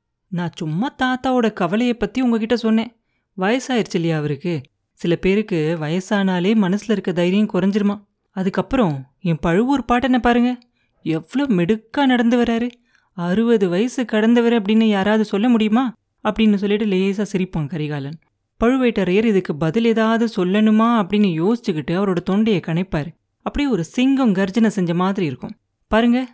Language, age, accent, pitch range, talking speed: Tamil, 30-49, native, 180-235 Hz, 125 wpm